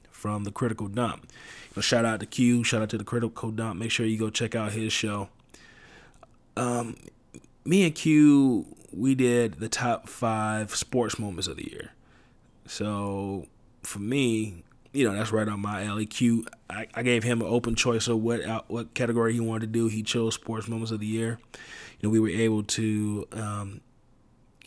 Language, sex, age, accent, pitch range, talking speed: English, male, 20-39, American, 105-115 Hz, 190 wpm